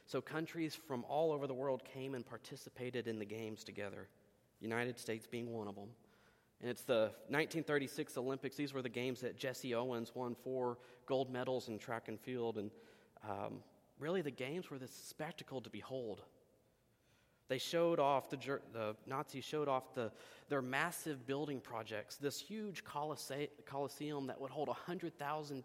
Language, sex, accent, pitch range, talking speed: English, male, American, 120-145 Hz, 165 wpm